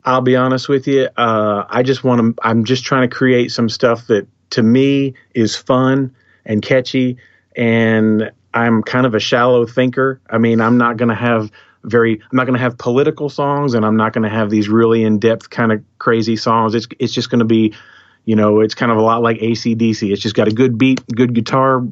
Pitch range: 110-125 Hz